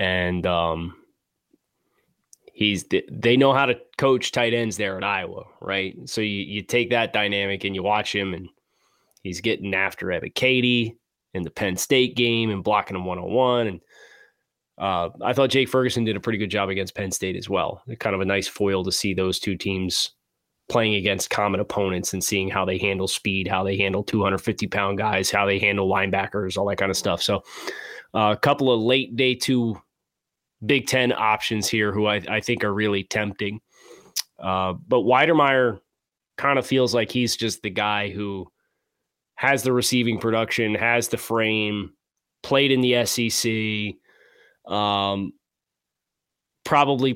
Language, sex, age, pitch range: English, male, 20-39, 100-120 Hz